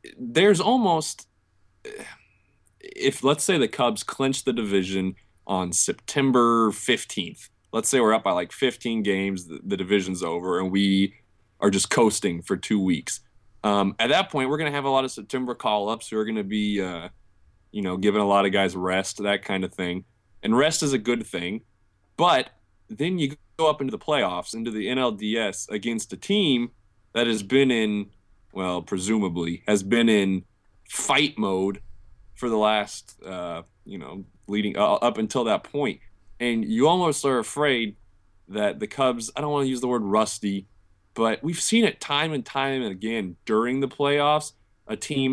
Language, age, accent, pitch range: English, 20-39, American, 95-125 Hz